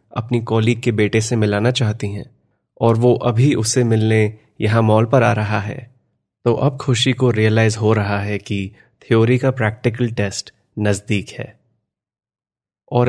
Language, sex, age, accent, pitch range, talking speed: Hindi, male, 30-49, native, 110-125 Hz, 160 wpm